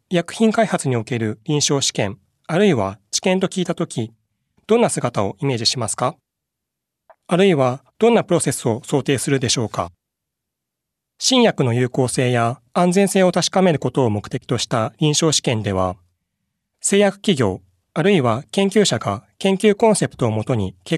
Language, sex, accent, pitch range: Japanese, male, native, 110-180 Hz